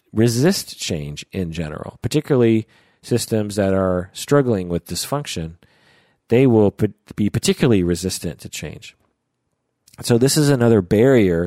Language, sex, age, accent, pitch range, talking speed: English, male, 40-59, American, 85-115 Hz, 120 wpm